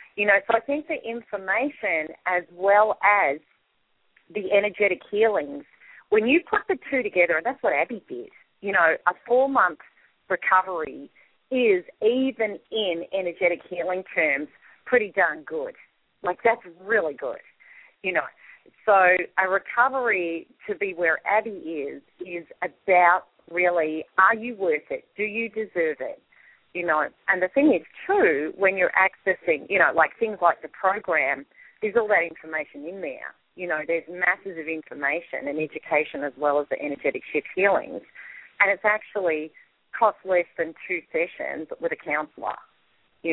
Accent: Australian